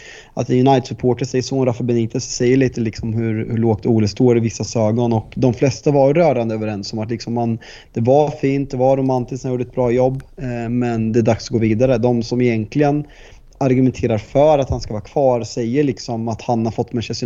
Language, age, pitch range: Swedish, 30-49, 115-130 Hz